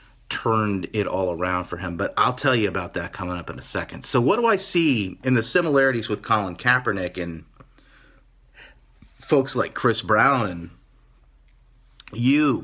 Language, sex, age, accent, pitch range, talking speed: English, male, 30-49, American, 95-125 Hz, 165 wpm